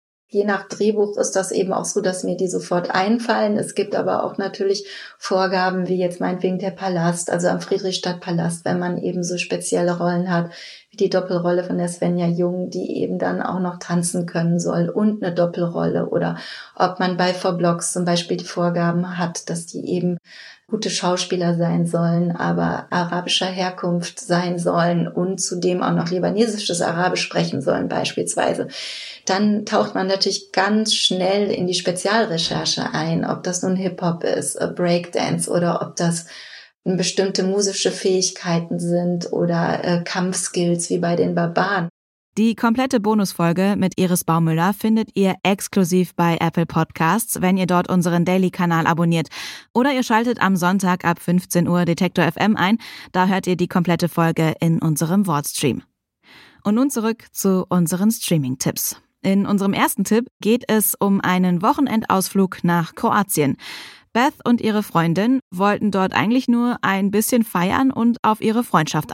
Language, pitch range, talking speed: German, 175-200 Hz, 160 wpm